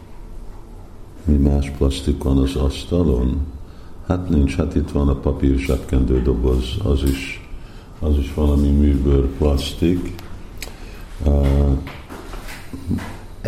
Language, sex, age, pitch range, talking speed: Hungarian, male, 50-69, 70-90 Hz, 100 wpm